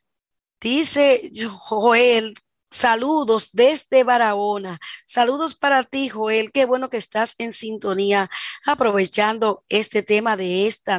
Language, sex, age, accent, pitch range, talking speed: Spanish, female, 40-59, American, 210-260 Hz, 110 wpm